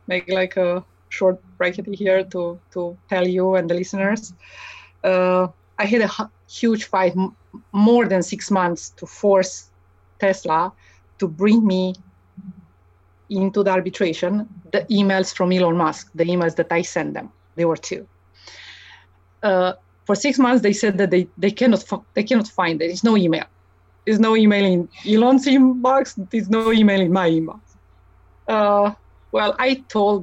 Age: 30-49